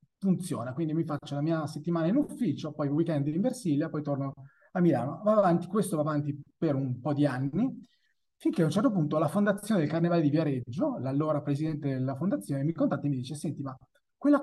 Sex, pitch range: male, 145-185 Hz